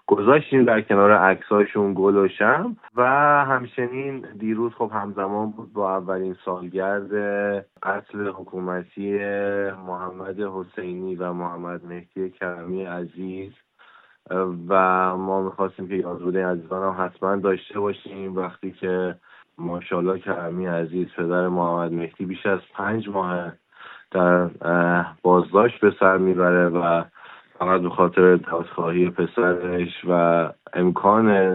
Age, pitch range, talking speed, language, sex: 20-39, 90-100 Hz, 110 wpm, Persian, male